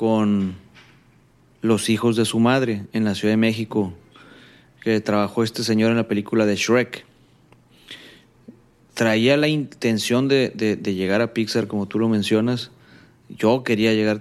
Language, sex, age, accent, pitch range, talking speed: Spanish, male, 40-59, Mexican, 110-130 Hz, 150 wpm